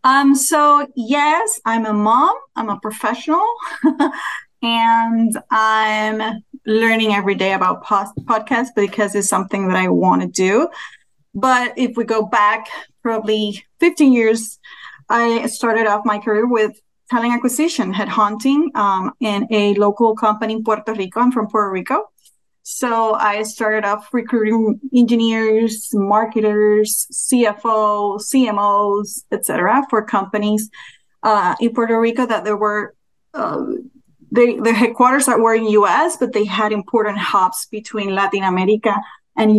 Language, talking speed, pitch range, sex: English, 135 wpm, 210-240 Hz, female